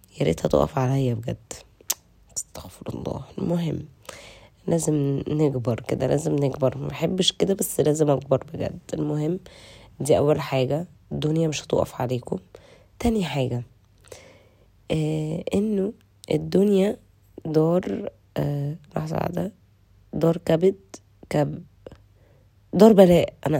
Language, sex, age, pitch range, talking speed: Arabic, female, 20-39, 125-170 Hz, 105 wpm